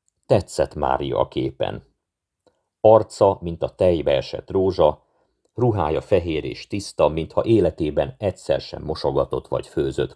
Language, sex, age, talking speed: Hungarian, male, 50-69, 125 wpm